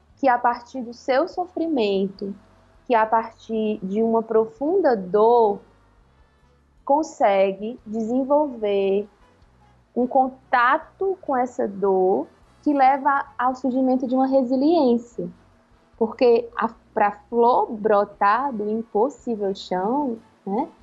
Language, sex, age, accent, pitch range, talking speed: Portuguese, female, 20-39, Brazilian, 205-270 Hz, 105 wpm